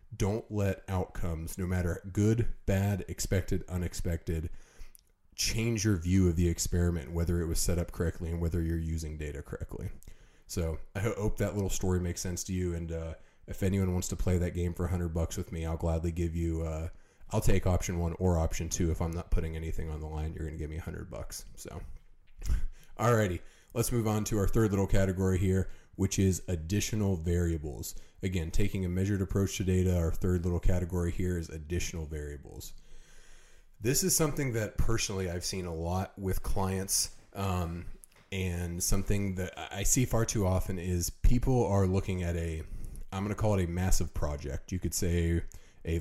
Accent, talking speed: American, 190 wpm